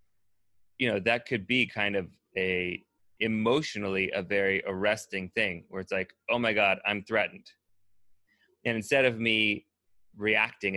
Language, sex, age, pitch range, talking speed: English, male, 30-49, 95-110 Hz, 145 wpm